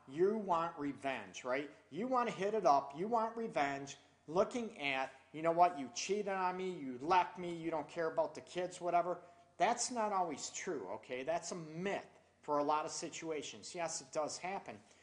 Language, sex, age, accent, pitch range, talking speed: English, male, 40-59, American, 145-180 Hz, 195 wpm